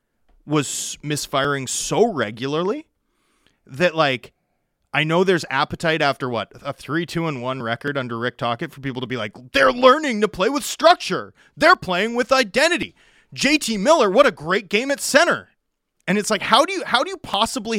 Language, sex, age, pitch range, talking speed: English, male, 30-49, 125-185 Hz, 185 wpm